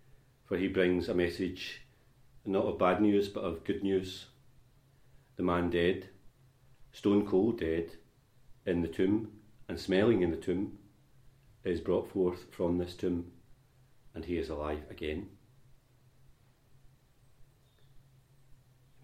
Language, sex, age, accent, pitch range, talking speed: English, male, 40-59, British, 90-130 Hz, 125 wpm